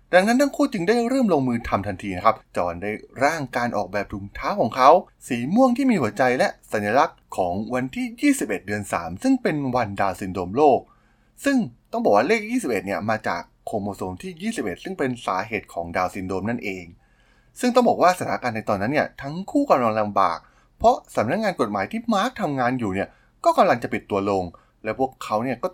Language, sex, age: Thai, male, 20-39